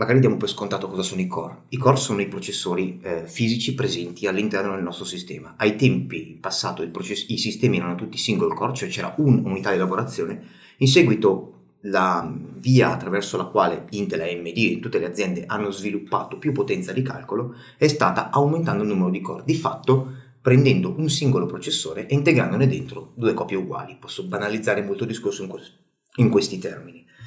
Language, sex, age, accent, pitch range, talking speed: Italian, male, 30-49, native, 95-135 Hz, 185 wpm